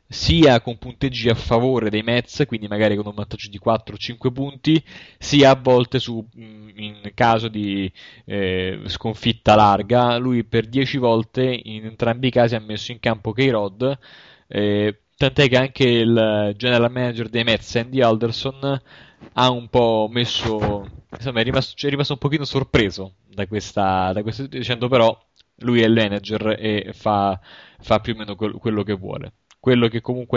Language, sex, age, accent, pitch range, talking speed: Italian, male, 20-39, native, 105-130 Hz, 165 wpm